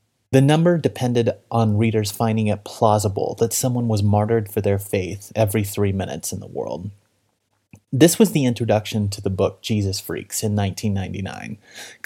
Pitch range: 105-120 Hz